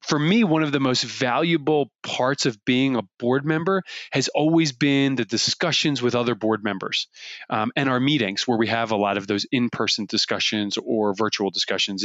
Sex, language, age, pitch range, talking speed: male, English, 20-39, 120-160 Hz, 190 wpm